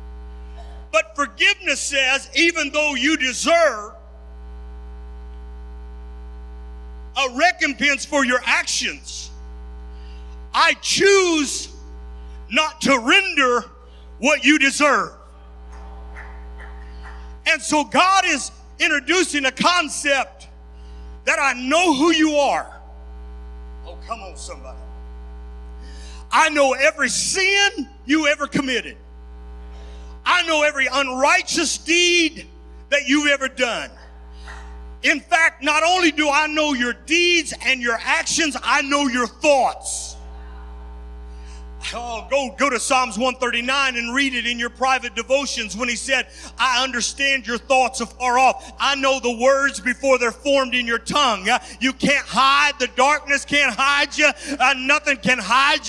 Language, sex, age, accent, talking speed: English, male, 50-69, American, 125 wpm